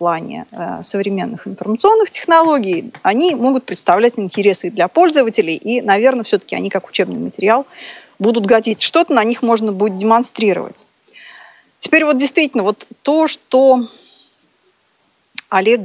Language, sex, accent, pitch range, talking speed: Russian, female, native, 215-295 Hz, 120 wpm